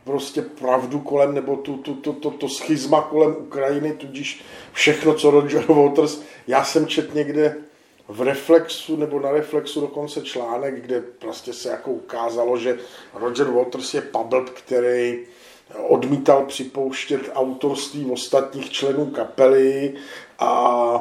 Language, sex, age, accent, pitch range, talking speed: Czech, male, 40-59, native, 130-150 Hz, 130 wpm